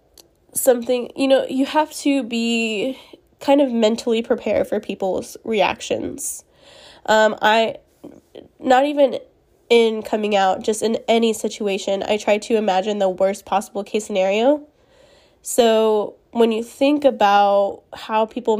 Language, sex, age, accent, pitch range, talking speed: English, female, 10-29, American, 200-240 Hz, 130 wpm